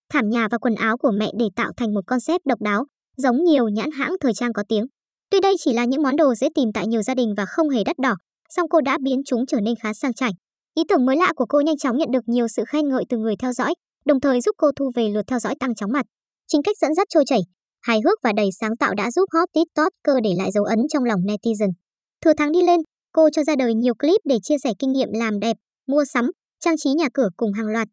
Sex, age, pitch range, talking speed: male, 20-39, 225-300 Hz, 275 wpm